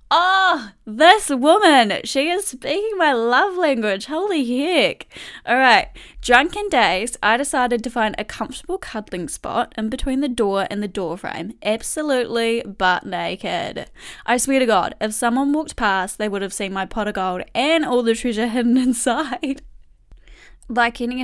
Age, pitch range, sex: 10-29, 215-285 Hz, female